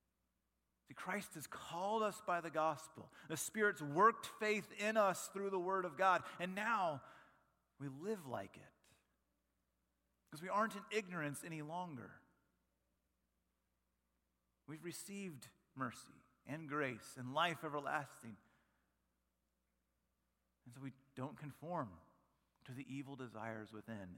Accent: American